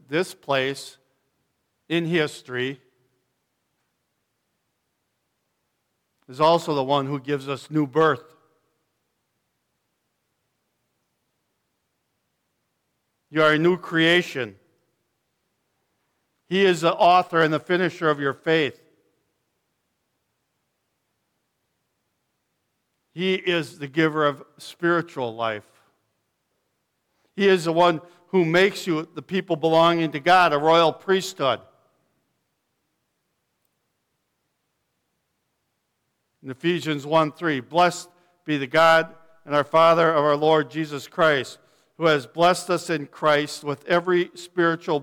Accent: American